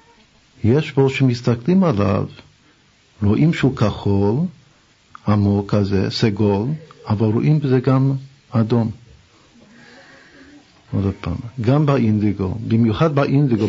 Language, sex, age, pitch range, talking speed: Hebrew, male, 50-69, 110-140 Hz, 90 wpm